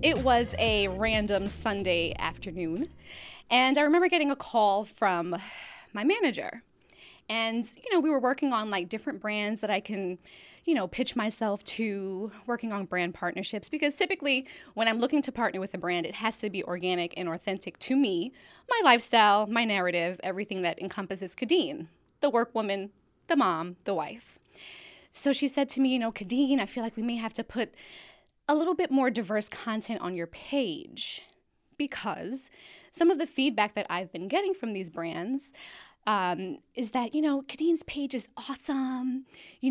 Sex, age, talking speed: female, 20-39, 175 wpm